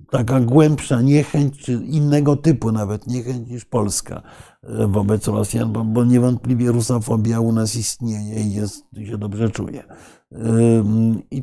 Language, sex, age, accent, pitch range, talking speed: Polish, male, 50-69, native, 110-135 Hz, 120 wpm